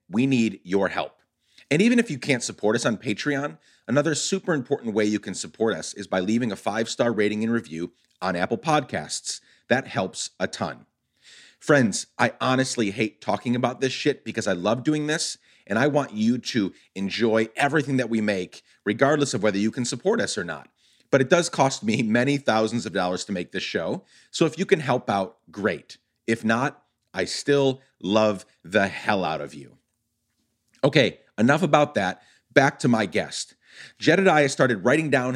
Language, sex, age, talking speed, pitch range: English, male, 30-49, 185 wpm, 110-140 Hz